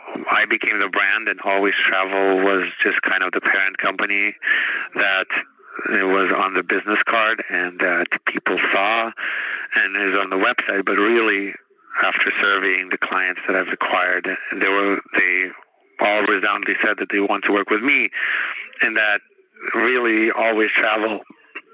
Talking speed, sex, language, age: 155 wpm, male, English, 30-49